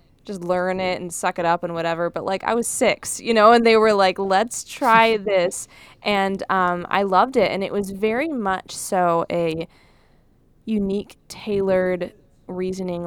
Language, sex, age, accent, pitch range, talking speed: English, female, 10-29, American, 175-220 Hz, 175 wpm